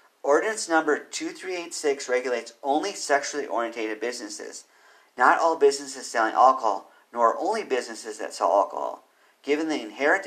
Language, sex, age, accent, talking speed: English, male, 50-69, American, 135 wpm